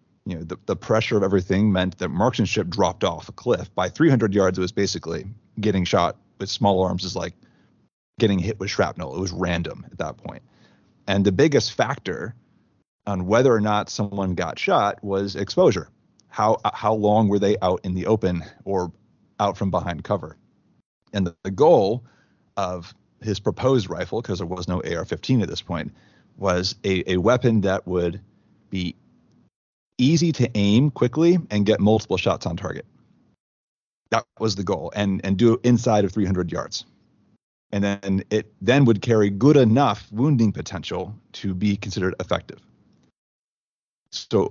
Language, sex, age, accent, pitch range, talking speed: English, male, 30-49, American, 95-110 Hz, 170 wpm